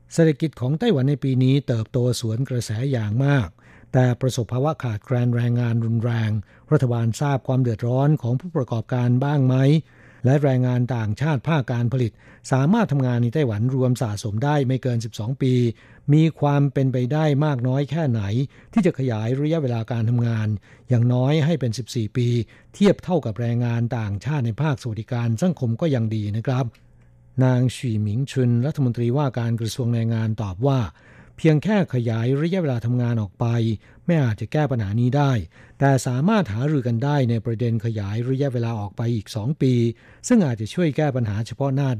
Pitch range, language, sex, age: 115-140 Hz, Thai, male, 60-79